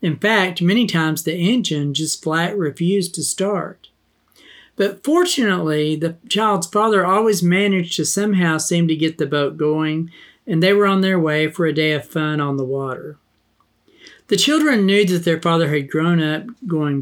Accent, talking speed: American, 175 wpm